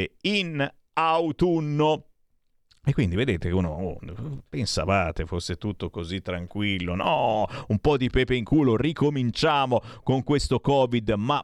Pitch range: 105-155 Hz